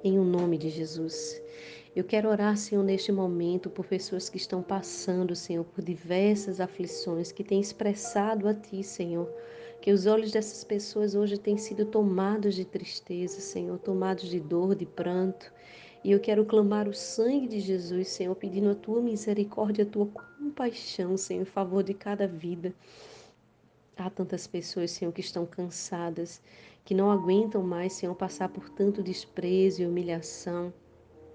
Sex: female